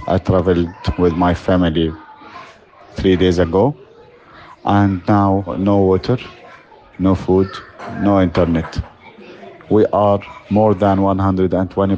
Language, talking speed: German, 105 wpm